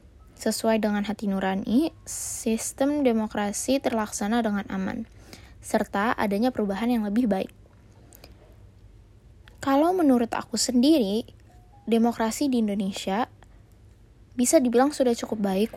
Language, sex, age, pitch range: English, female, 20-39, 190-235 Hz